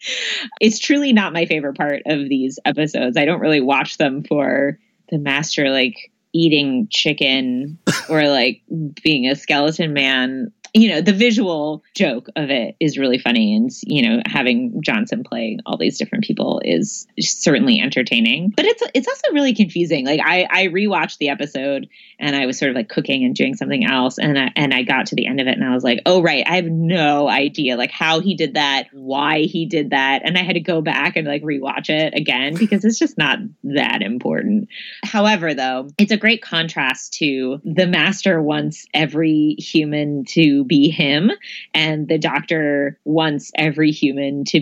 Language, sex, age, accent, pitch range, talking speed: English, female, 20-39, American, 140-215 Hz, 185 wpm